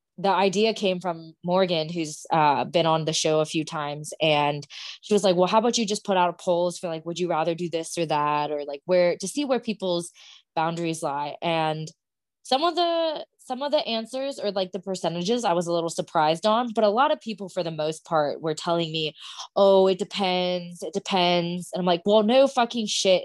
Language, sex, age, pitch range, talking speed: English, female, 20-39, 160-195 Hz, 225 wpm